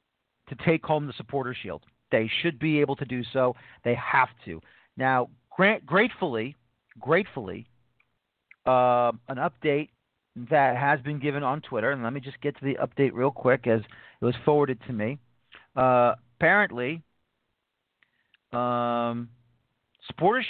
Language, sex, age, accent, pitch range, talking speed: English, male, 40-59, American, 125-165 Hz, 145 wpm